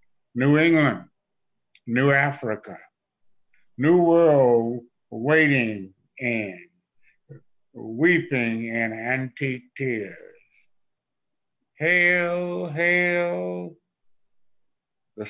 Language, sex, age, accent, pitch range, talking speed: English, male, 60-79, American, 120-150 Hz, 60 wpm